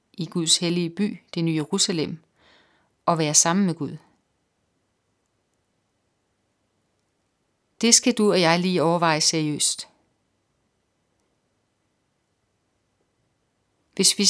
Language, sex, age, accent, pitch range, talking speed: Danish, female, 30-49, native, 155-200 Hz, 90 wpm